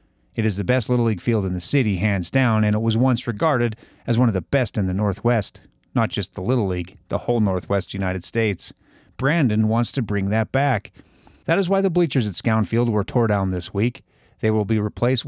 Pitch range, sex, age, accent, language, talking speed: 100-130 Hz, male, 40-59, American, English, 225 wpm